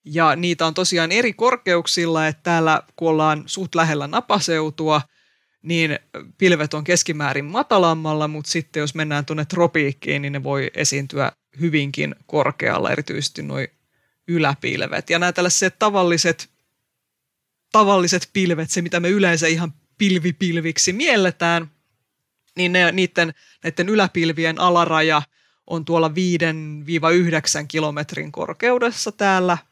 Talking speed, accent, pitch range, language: 115 wpm, native, 155-185 Hz, Finnish